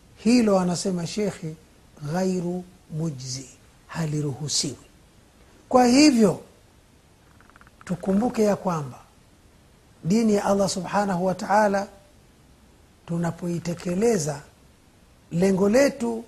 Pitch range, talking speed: 175-220 Hz, 75 wpm